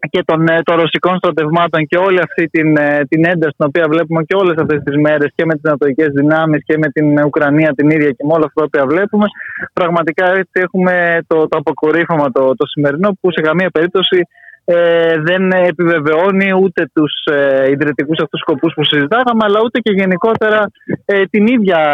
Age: 20-39